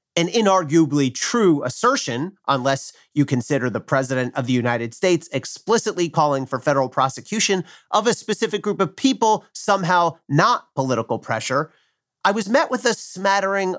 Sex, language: male, English